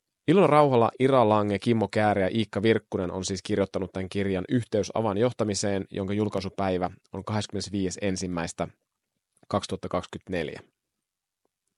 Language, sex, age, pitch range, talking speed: Finnish, male, 30-49, 95-110 Hz, 100 wpm